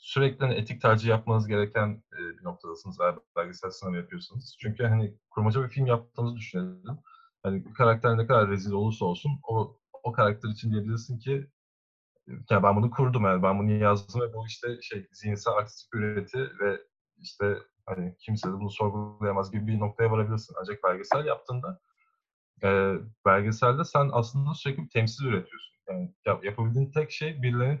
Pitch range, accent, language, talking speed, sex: 105-135 Hz, native, Turkish, 160 wpm, male